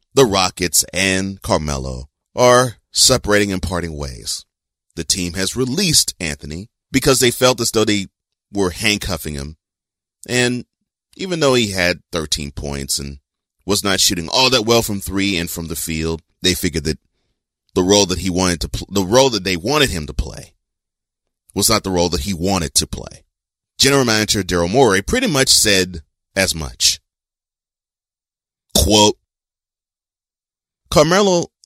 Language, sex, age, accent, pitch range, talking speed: English, male, 30-49, American, 85-110 Hz, 150 wpm